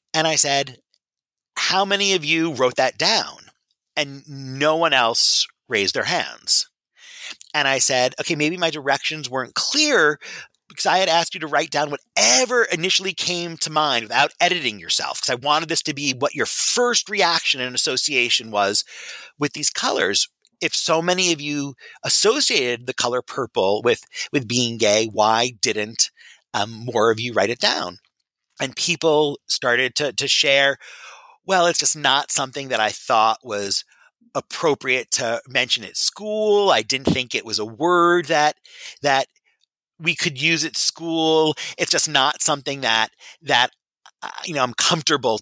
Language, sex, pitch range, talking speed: English, male, 130-170 Hz, 165 wpm